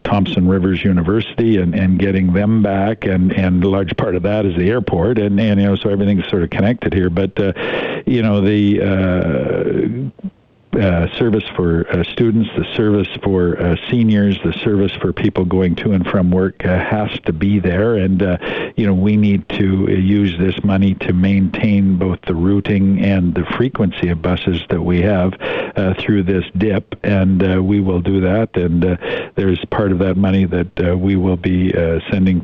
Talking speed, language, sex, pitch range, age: 195 wpm, English, male, 90-100 Hz, 50-69